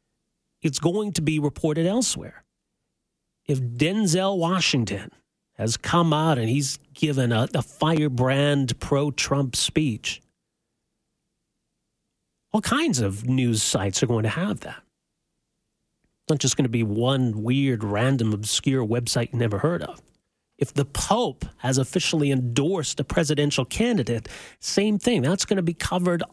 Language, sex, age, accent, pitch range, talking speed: English, male, 40-59, American, 125-165 Hz, 140 wpm